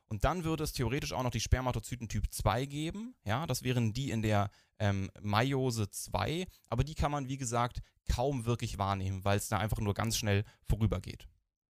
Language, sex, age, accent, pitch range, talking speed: German, male, 10-29, German, 105-130 Hz, 195 wpm